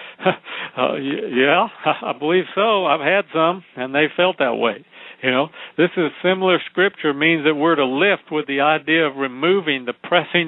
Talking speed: 170 wpm